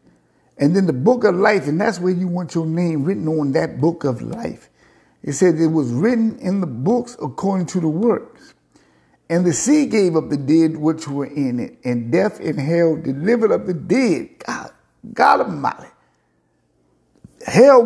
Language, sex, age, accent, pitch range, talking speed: English, male, 60-79, American, 155-200 Hz, 180 wpm